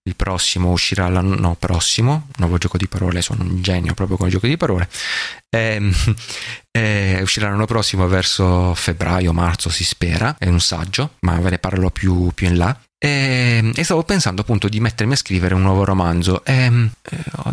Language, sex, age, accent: Italian, male, 30-49, native